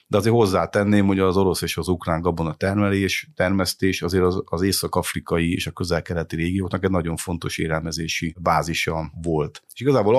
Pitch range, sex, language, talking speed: 85-105 Hz, male, Hungarian, 165 wpm